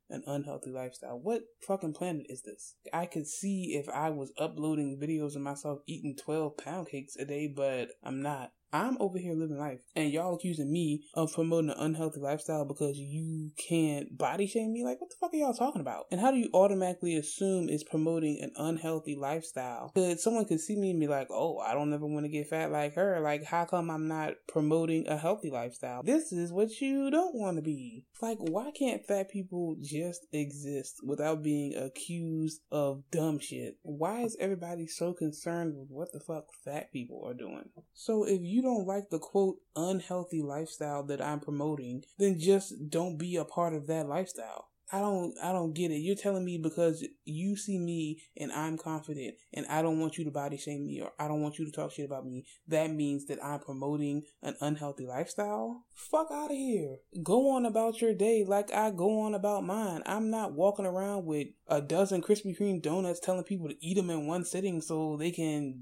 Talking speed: 205 wpm